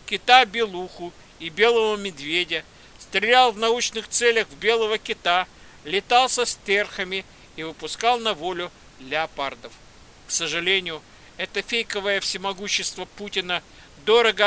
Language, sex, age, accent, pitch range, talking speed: Russian, male, 50-69, native, 185-220 Hz, 110 wpm